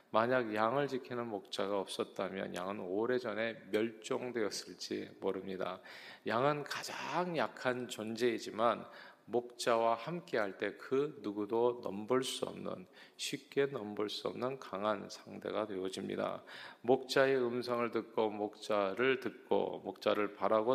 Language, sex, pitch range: Korean, male, 105-130 Hz